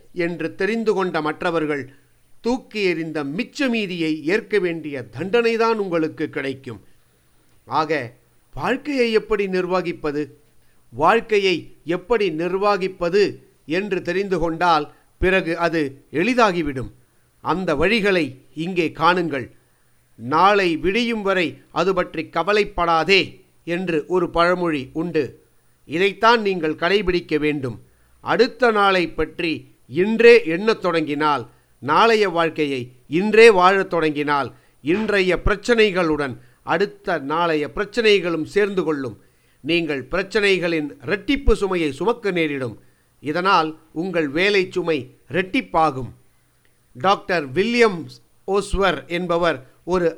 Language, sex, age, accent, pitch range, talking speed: Tamil, male, 50-69, native, 155-200 Hz, 90 wpm